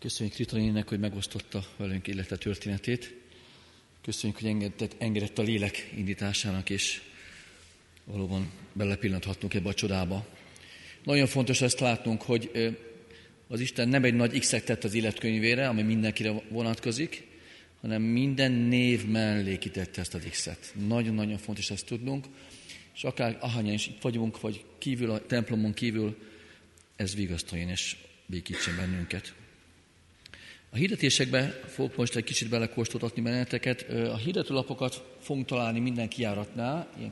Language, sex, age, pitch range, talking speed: Hungarian, male, 40-59, 95-120 Hz, 130 wpm